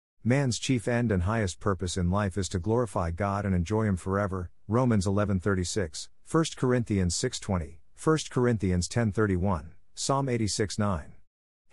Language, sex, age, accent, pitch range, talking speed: English, male, 50-69, American, 90-115 Hz, 135 wpm